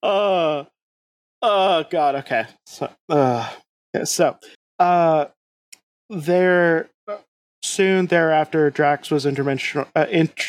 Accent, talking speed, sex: American, 80 wpm, male